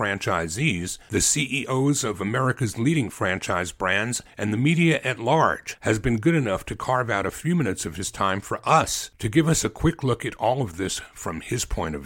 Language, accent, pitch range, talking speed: English, American, 95-130 Hz, 210 wpm